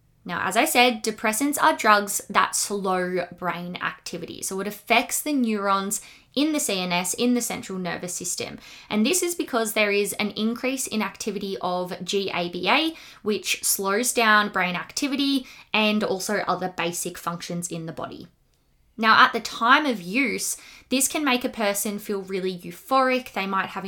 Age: 20-39